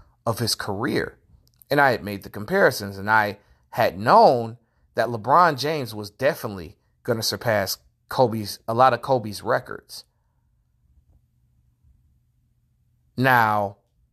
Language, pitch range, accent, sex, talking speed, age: English, 105-140 Hz, American, male, 120 wpm, 30-49